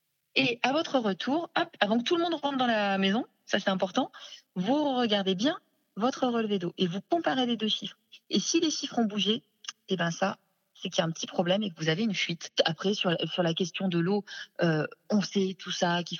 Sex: female